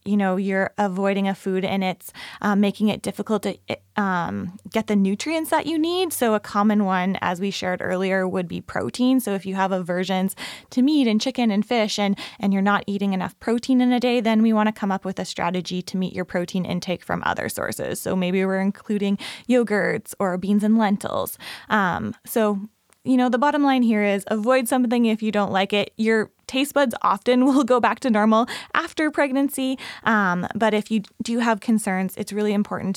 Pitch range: 190-245 Hz